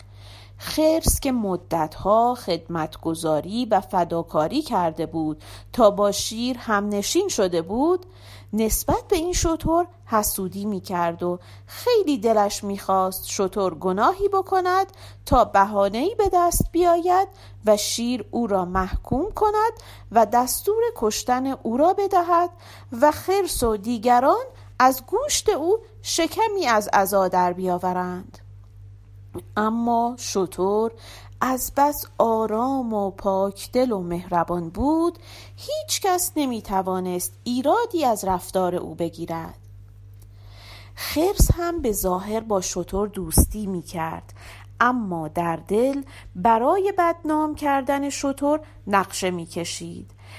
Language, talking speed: Persian, 115 wpm